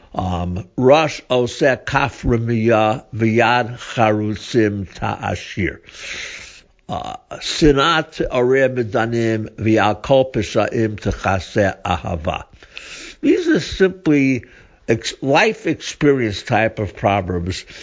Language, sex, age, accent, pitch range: English, male, 60-79, American, 105-140 Hz